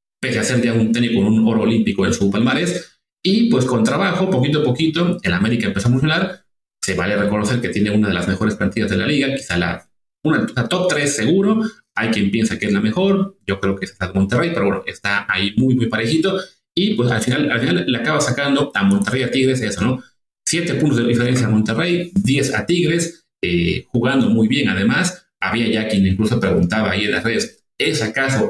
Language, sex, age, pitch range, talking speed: Spanish, male, 30-49, 105-165 Hz, 220 wpm